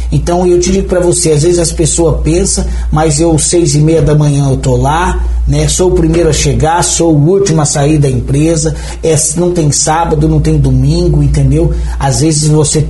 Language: Portuguese